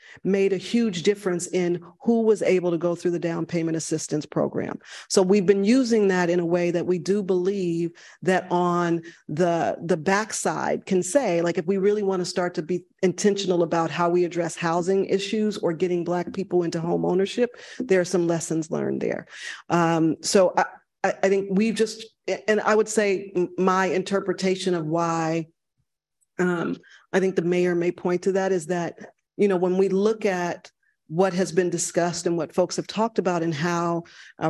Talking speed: 190 wpm